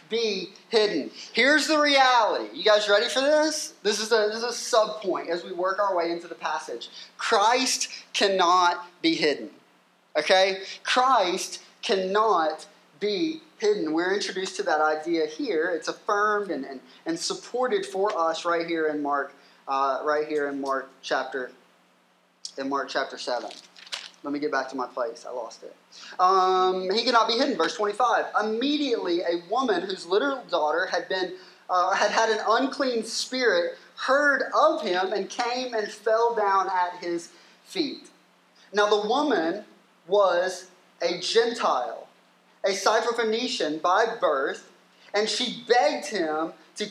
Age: 20-39